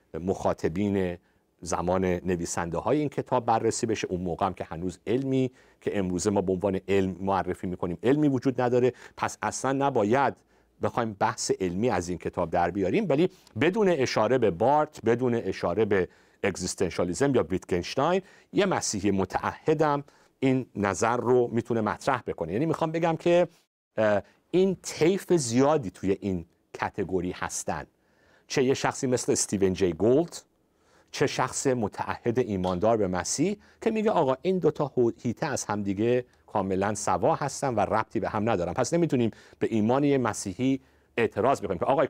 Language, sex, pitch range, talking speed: Persian, male, 95-140 Hz, 150 wpm